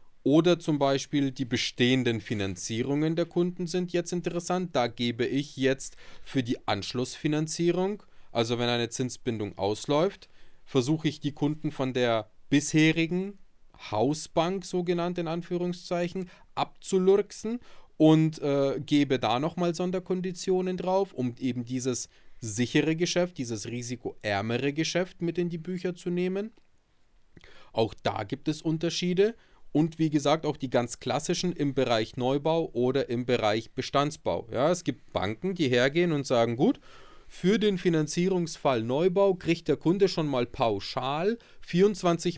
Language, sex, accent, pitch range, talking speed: German, male, German, 125-175 Hz, 135 wpm